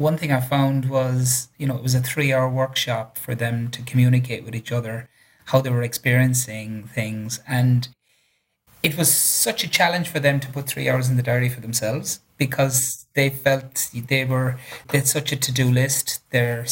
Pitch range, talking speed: 125-140 Hz, 190 wpm